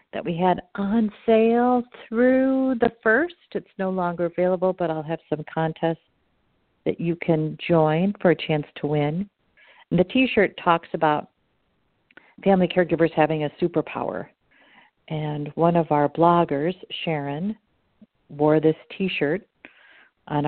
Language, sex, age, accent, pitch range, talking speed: English, female, 50-69, American, 155-185 Hz, 130 wpm